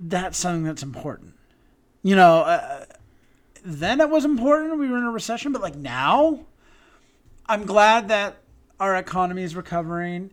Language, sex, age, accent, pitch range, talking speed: English, male, 30-49, American, 170-235 Hz, 150 wpm